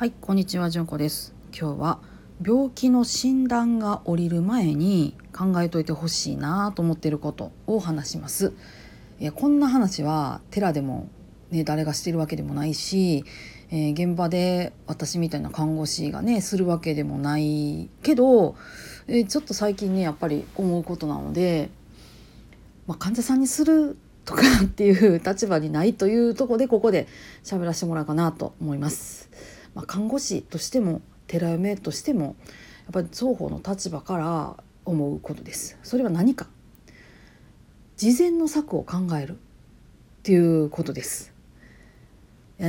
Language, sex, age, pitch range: Japanese, female, 40-59, 160-220 Hz